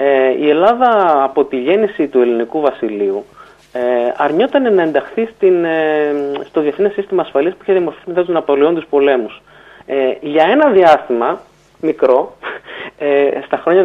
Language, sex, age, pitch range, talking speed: Greek, male, 30-49, 135-200 Hz, 150 wpm